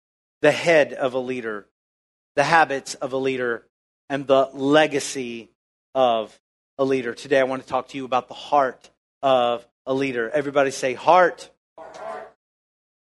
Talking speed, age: 150 wpm, 40-59